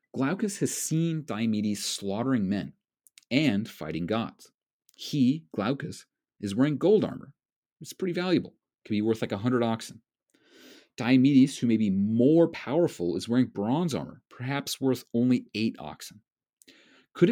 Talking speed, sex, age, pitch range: 140 wpm, male, 40-59, 105-145 Hz